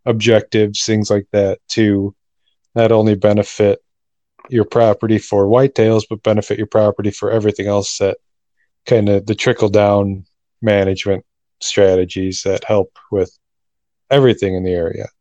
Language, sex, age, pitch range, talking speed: English, male, 20-39, 100-115 Hz, 135 wpm